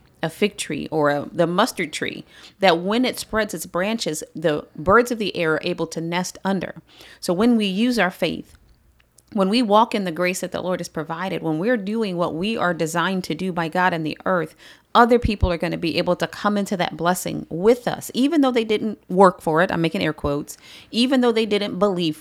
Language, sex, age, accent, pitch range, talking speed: English, female, 40-59, American, 165-220 Hz, 225 wpm